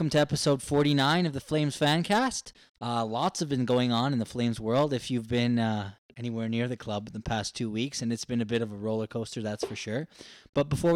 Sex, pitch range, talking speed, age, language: male, 115-145 Hz, 245 wpm, 20-39, English